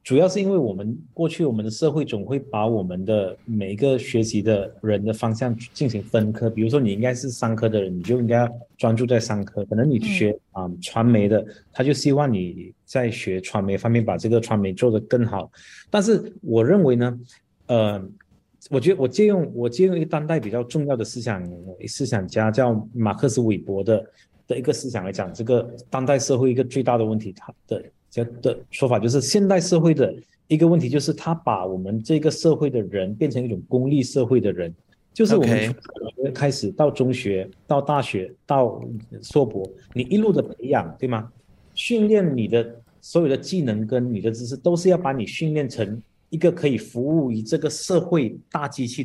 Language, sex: Chinese, male